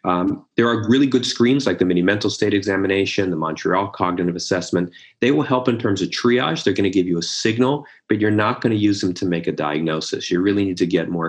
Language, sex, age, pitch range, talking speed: English, male, 40-59, 85-105 Hz, 250 wpm